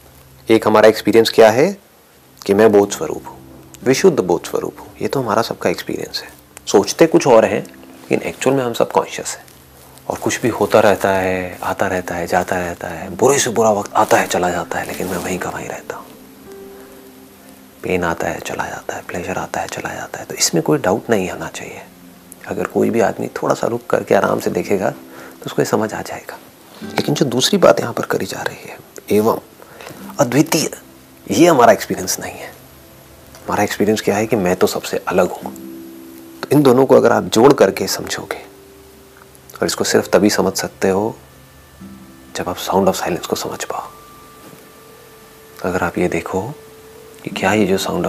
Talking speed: 190 wpm